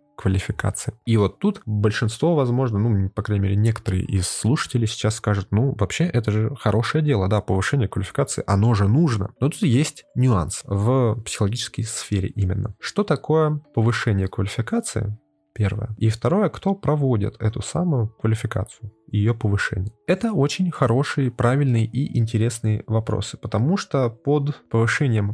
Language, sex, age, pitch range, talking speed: Russian, male, 20-39, 105-140 Hz, 140 wpm